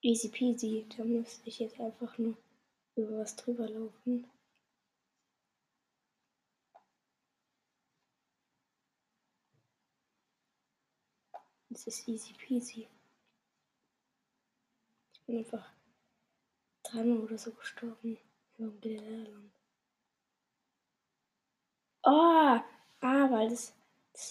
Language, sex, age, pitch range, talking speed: German, female, 20-39, 225-255 Hz, 70 wpm